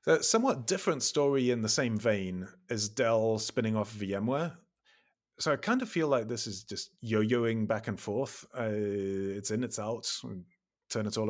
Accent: British